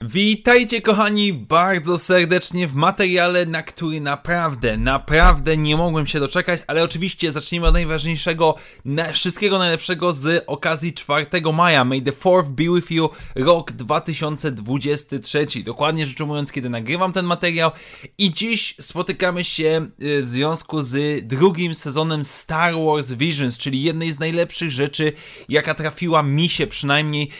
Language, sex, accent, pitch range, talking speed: Polish, male, native, 145-175 Hz, 140 wpm